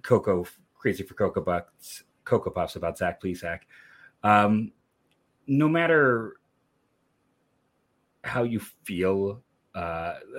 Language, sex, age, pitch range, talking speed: English, male, 30-49, 95-135 Hz, 105 wpm